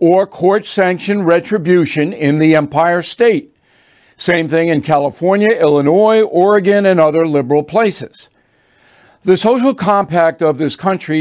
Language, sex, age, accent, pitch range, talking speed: English, male, 60-79, American, 155-195 Hz, 130 wpm